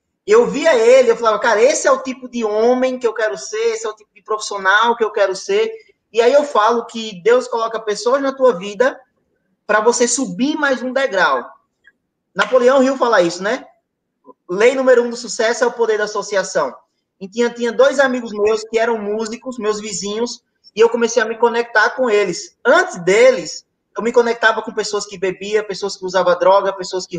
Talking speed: 205 wpm